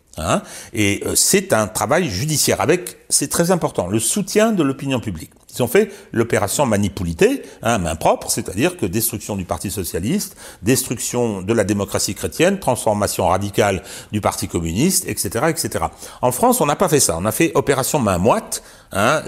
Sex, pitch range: male, 100-155 Hz